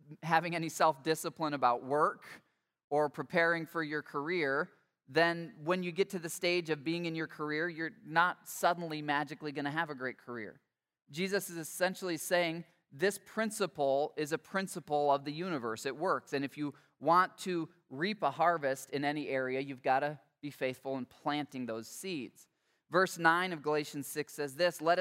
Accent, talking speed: American, 180 wpm